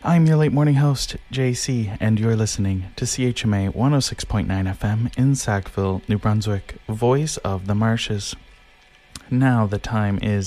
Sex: male